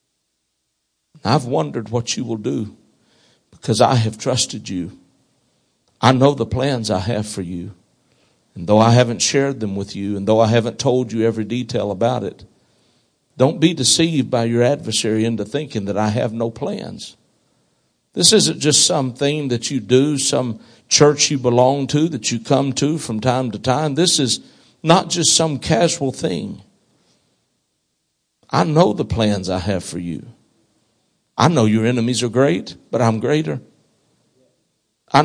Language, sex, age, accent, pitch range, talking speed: English, male, 60-79, American, 115-145 Hz, 165 wpm